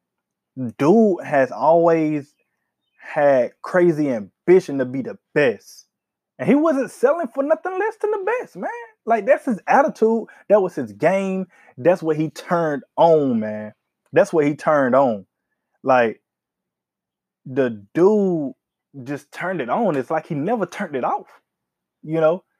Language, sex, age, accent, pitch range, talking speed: English, male, 20-39, American, 155-260 Hz, 150 wpm